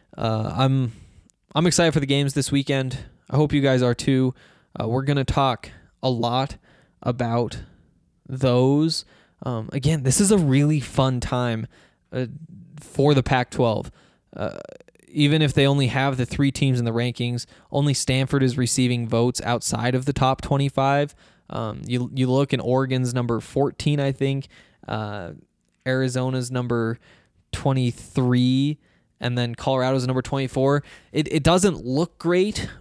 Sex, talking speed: male, 150 wpm